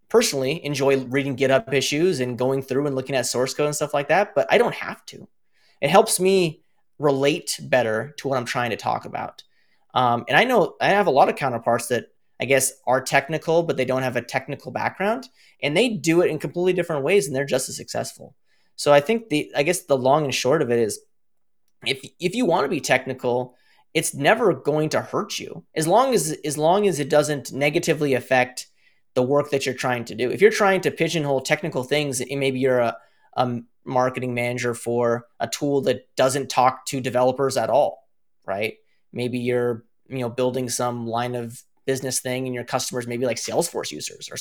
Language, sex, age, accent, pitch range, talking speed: English, male, 30-49, American, 125-150 Hz, 205 wpm